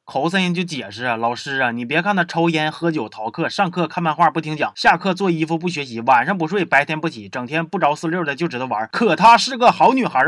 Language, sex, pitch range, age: Chinese, male, 150-205 Hz, 20-39